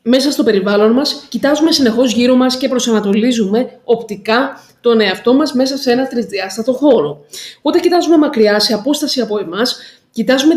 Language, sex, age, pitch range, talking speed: Greek, female, 20-39, 215-275 Hz, 155 wpm